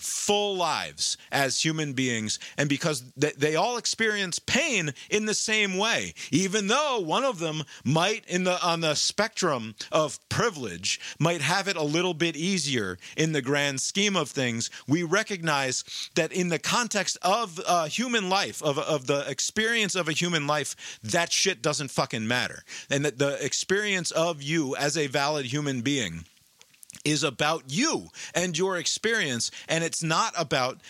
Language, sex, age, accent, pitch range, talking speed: English, male, 40-59, American, 120-175 Hz, 165 wpm